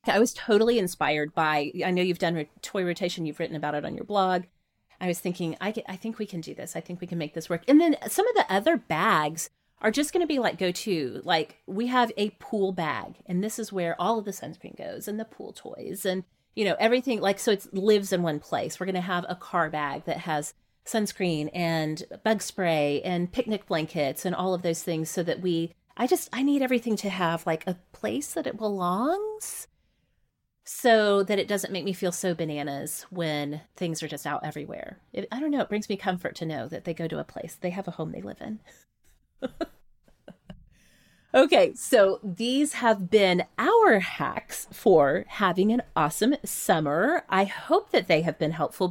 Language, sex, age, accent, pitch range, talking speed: English, female, 30-49, American, 165-220 Hz, 215 wpm